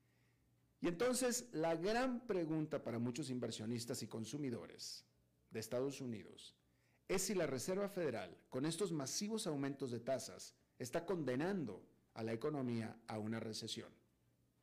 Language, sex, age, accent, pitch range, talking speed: Spanish, male, 40-59, Mexican, 115-155 Hz, 130 wpm